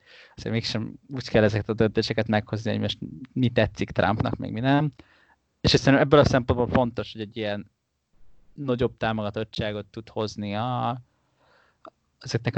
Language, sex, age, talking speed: Hungarian, male, 20-39, 150 wpm